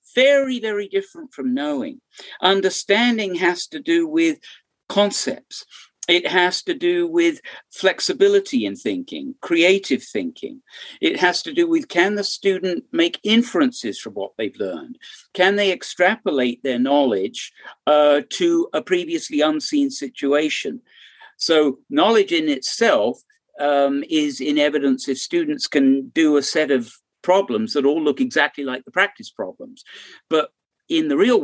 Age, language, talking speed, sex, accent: 50-69, English, 140 wpm, male, British